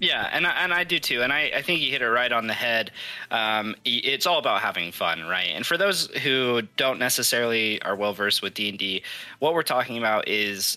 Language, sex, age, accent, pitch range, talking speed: English, male, 20-39, American, 100-140 Hz, 225 wpm